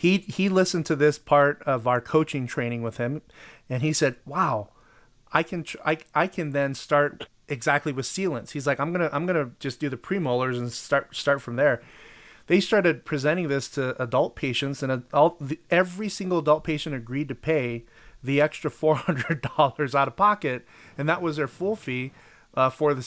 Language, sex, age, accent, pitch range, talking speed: English, male, 30-49, American, 130-165 Hz, 195 wpm